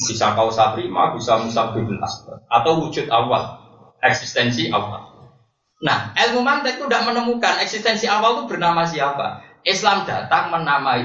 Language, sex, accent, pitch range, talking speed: Indonesian, male, native, 140-235 Hz, 130 wpm